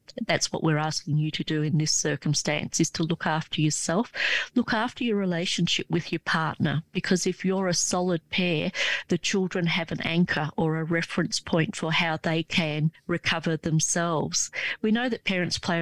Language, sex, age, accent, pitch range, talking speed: English, female, 40-59, Australian, 160-185 Hz, 180 wpm